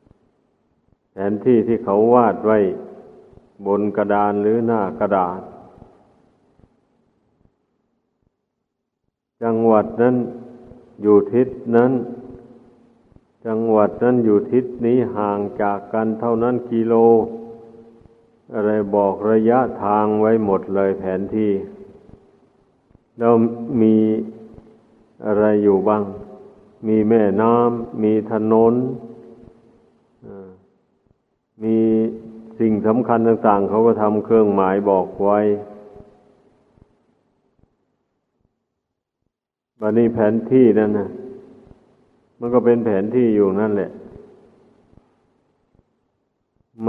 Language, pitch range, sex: Thai, 105-115 Hz, male